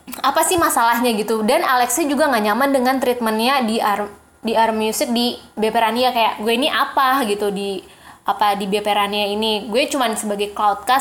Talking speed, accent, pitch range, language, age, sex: 175 wpm, native, 220-275 Hz, Indonesian, 20-39, female